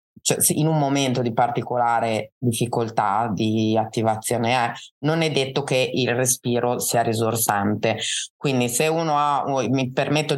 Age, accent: 20-39, native